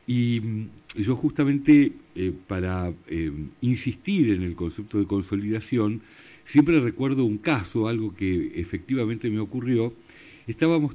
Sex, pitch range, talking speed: male, 105-155 Hz, 120 wpm